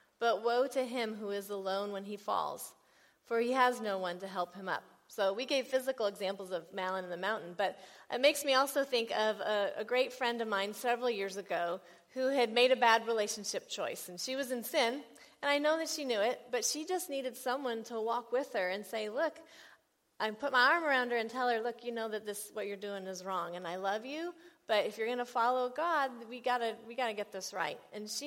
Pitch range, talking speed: 210-275 Hz, 245 wpm